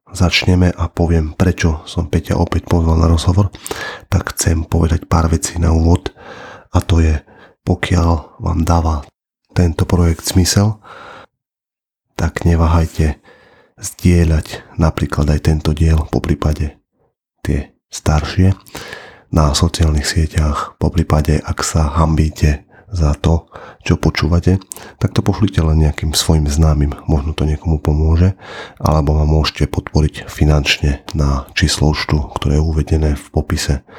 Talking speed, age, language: 125 wpm, 30-49, Slovak